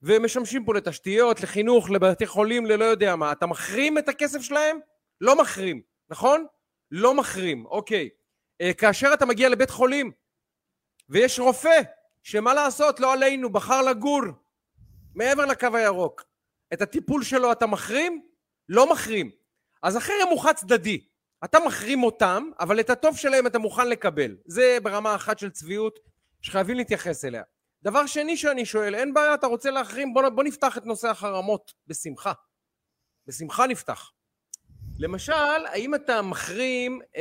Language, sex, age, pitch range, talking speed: Hebrew, male, 30-49, 170-255 Hz, 145 wpm